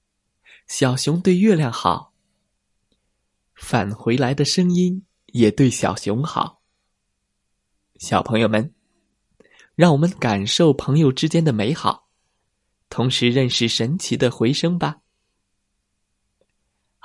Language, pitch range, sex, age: Chinese, 110-155 Hz, male, 20-39